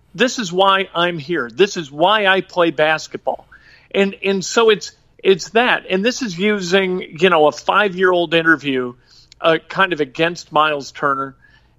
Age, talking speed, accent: 50-69, 175 wpm, American